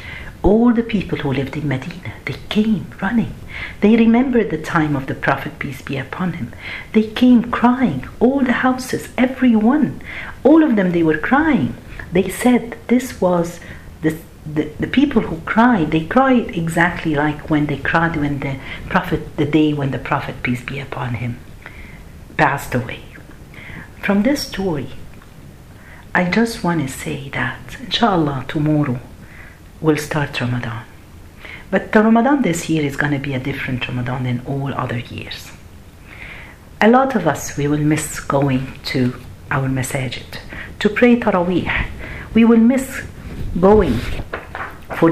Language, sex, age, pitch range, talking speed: Arabic, female, 50-69, 130-190 Hz, 150 wpm